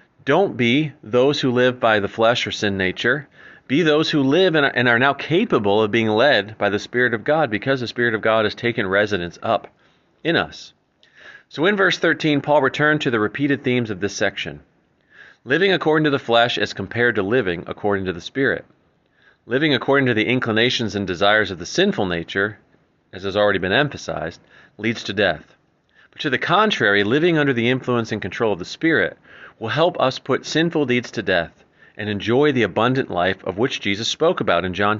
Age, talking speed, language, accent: 30-49, 200 wpm, English, American